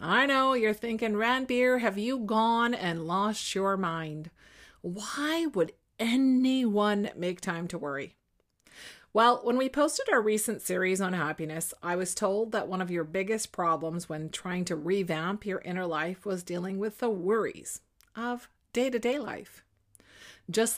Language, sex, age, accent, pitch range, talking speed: English, female, 40-59, American, 165-225 Hz, 155 wpm